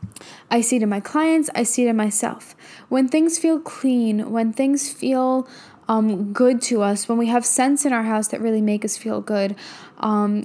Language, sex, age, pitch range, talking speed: English, female, 10-29, 205-255 Hz, 205 wpm